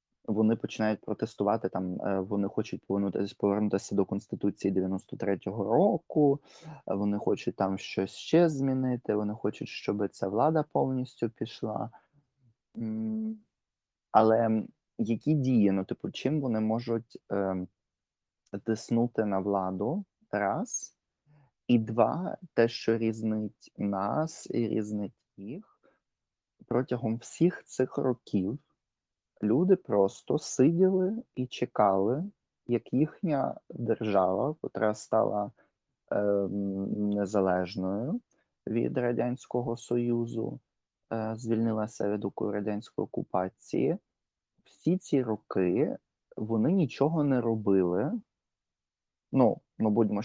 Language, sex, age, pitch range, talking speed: Ukrainian, male, 20-39, 100-130 Hz, 95 wpm